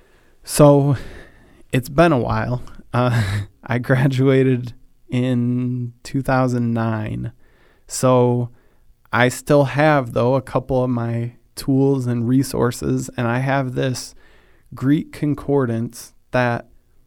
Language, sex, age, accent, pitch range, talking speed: English, male, 20-39, American, 115-135 Hz, 100 wpm